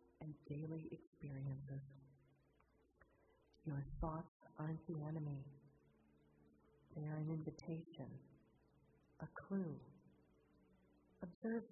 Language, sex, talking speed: English, female, 75 wpm